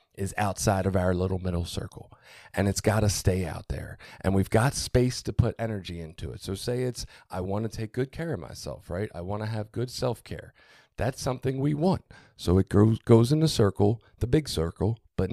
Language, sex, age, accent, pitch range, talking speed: English, male, 40-59, American, 100-125 Hz, 215 wpm